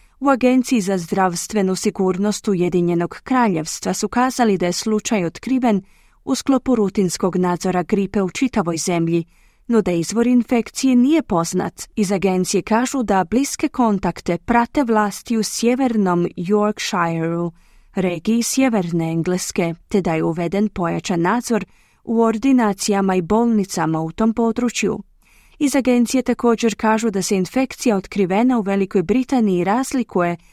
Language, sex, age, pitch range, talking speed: Croatian, female, 20-39, 180-235 Hz, 130 wpm